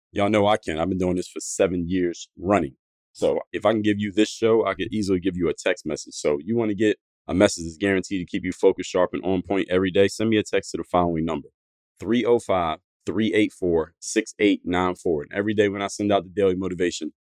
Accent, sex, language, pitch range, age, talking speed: American, male, English, 90-105 Hz, 30-49, 225 wpm